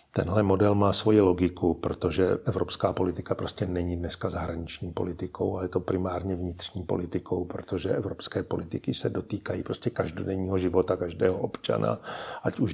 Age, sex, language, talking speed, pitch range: 50-69, male, Czech, 145 wpm, 90-100 Hz